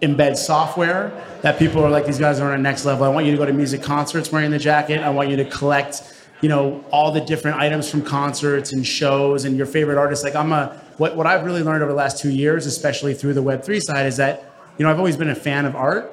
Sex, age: male, 30-49